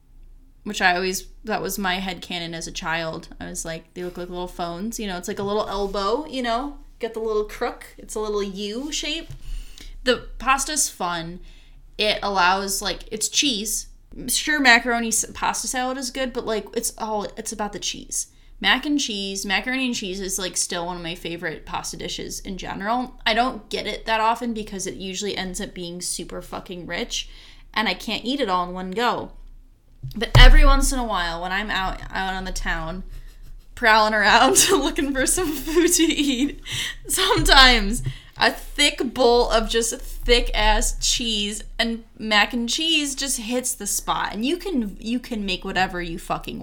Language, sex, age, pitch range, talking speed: English, female, 20-39, 185-245 Hz, 190 wpm